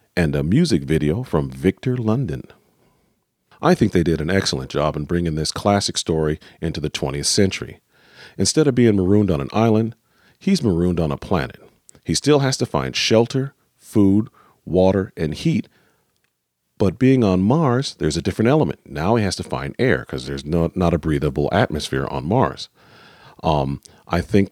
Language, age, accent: English, 40-59, American